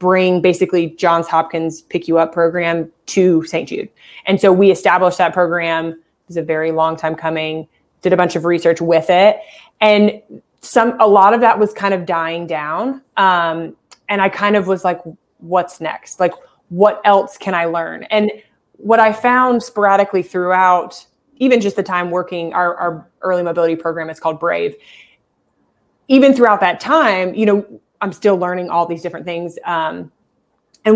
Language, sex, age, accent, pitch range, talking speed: English, female, 20-39, American, 170-230 Hz, 175 wpm